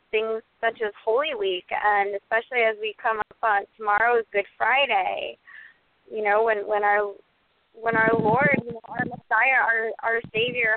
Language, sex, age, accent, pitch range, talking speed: English, female, 20-39, American, 220-285 Hz, 155 wpm